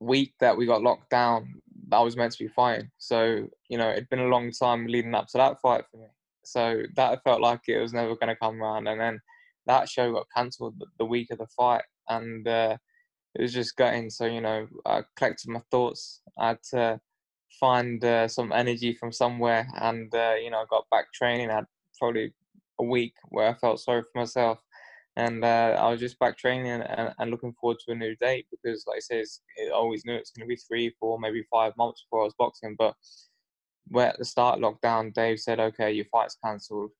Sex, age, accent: male, 10-29, British